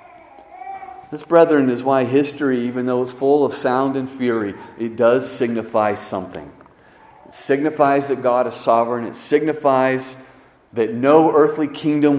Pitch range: 125-210 Hz